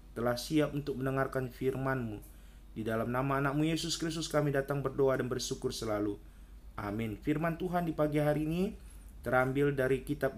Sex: male